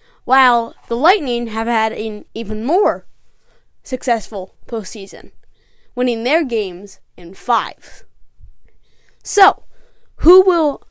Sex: female